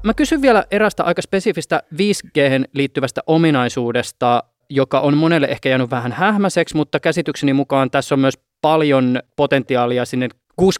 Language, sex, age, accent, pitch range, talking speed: Finnish, male, 20-39, native, 130-175 Hz, 140 wpm